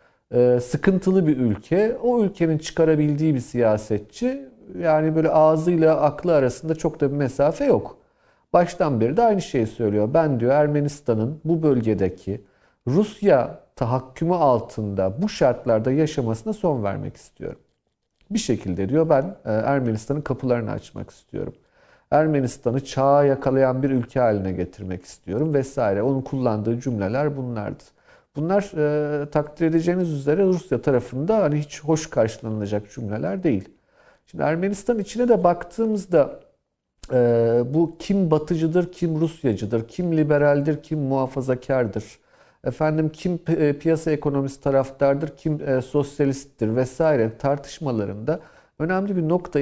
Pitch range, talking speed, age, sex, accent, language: 125-165 Hz, 120 wpm, 40-59, male, native, Turkish